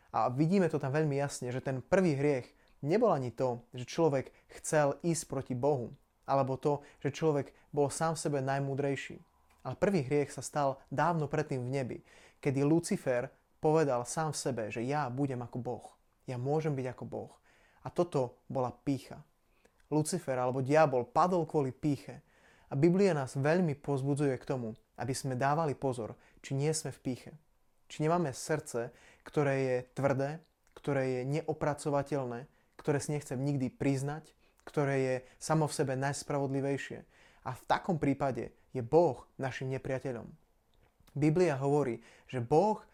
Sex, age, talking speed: male, 30-49, 155 wpm